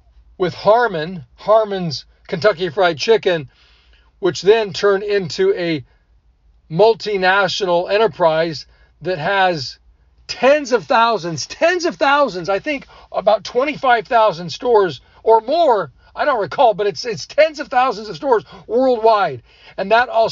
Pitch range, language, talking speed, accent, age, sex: 145-220 Hz, English, 125 wpm, American, 50-69, male